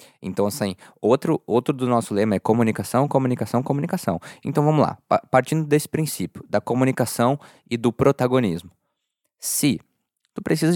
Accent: Brazilian